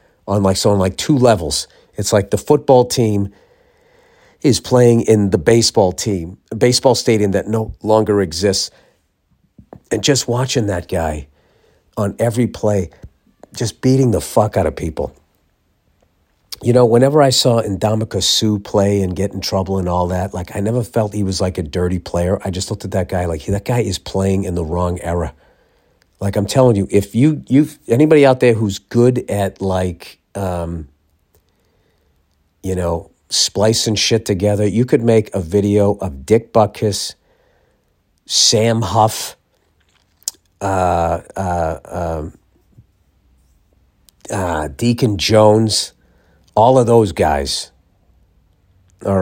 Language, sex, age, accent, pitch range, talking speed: English, male, 50-69, American, 90-115 Hz, 150 wpm